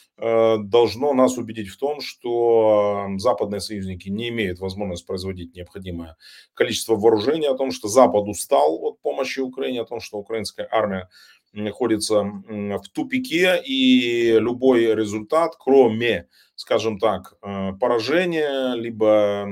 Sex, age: male, 30-49